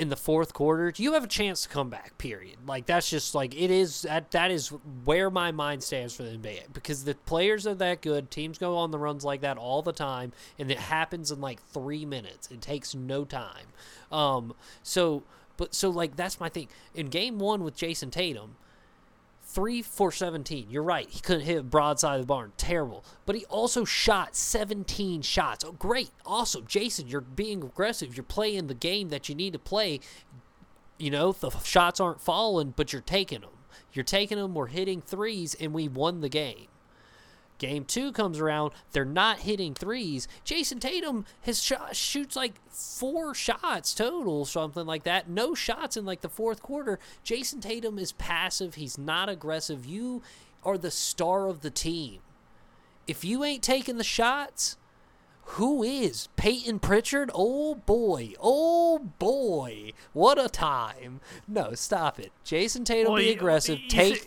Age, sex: 20-39, male